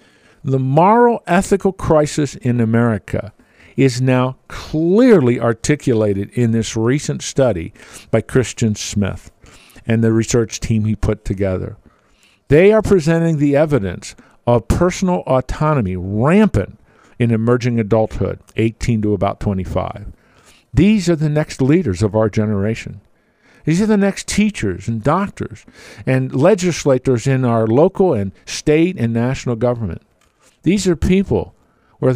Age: 50-69